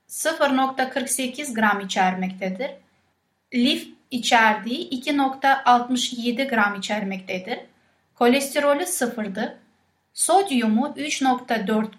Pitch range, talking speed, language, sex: 215-280 Hz, 60 wpm, Turkish, female